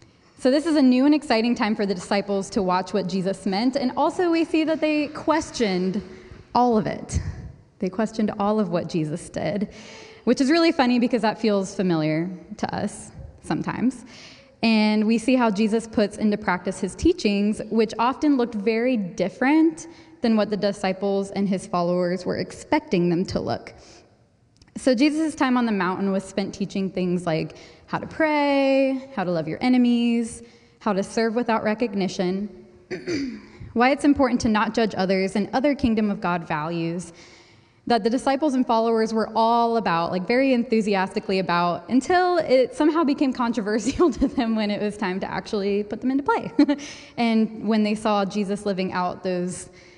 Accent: American